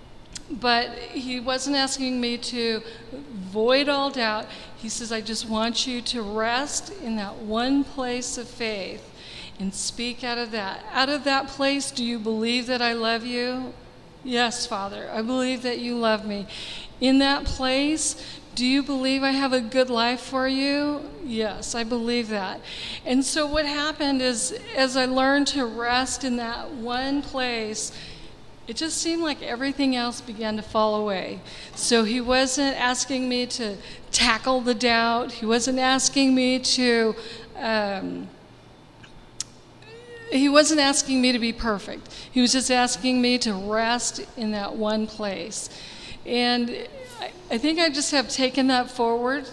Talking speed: 160 wpm